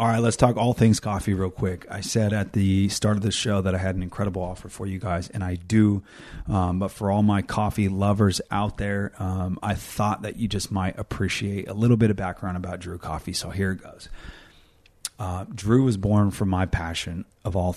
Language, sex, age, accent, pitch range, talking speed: English, male, 30-49, American, 95-110 Hz, 225 wpm